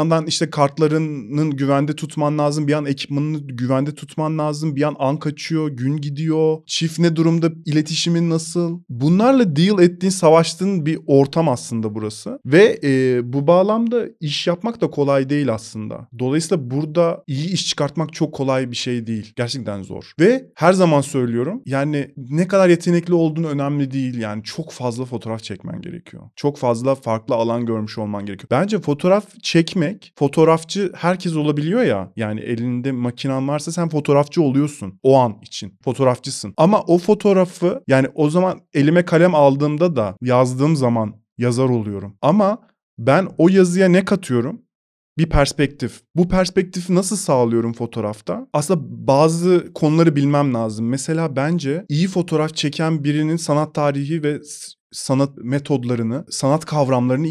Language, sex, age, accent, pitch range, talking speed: Turkish, male, 30-49, native, 130-165 Hz, 145 wpm